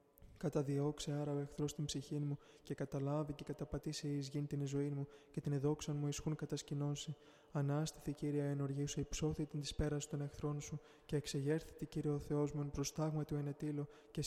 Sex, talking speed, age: male, 180 wpm, 20-39